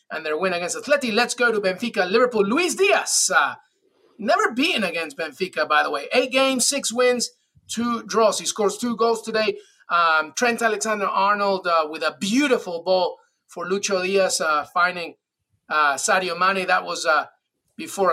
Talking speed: 165 wpm